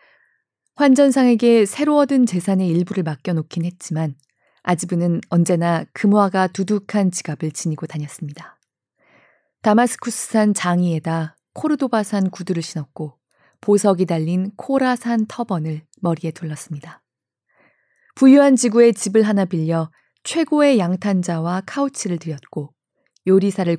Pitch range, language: 165-220 Hz, Korean